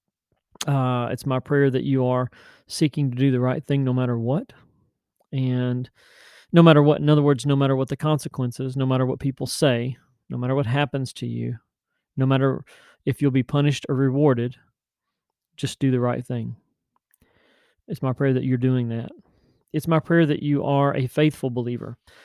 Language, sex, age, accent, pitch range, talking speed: English, male, 40-59, American, 125-145 Hz, 185 wpm